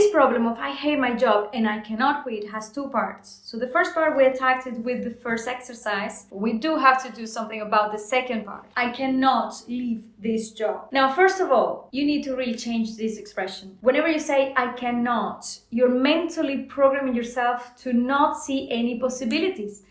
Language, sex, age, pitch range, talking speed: English, female, 20-39, 230-290 Hz, 195 wpm